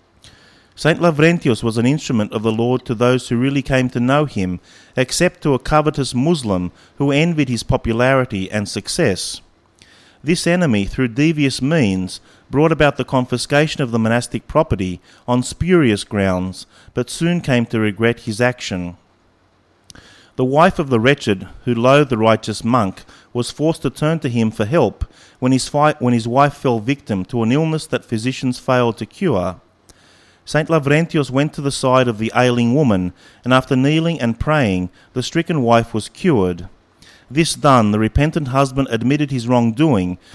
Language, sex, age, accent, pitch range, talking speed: English, male, 40-59, Australian, 110-140 Hz, 165 wpm